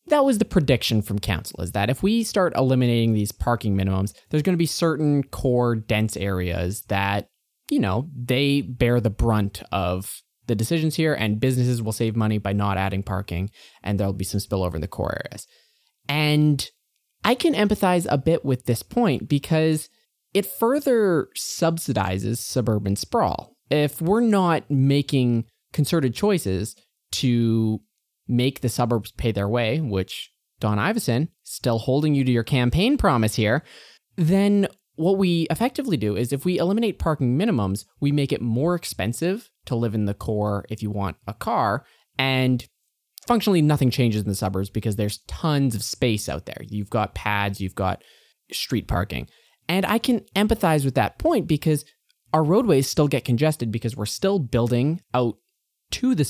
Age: 20-39